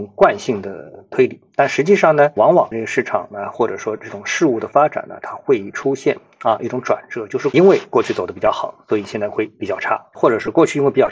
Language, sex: Chinese, male